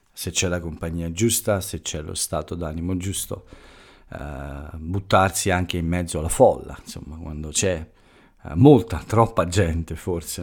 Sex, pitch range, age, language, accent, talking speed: male, 85-100 Hz, 50-69, Italian, native, 140 wpm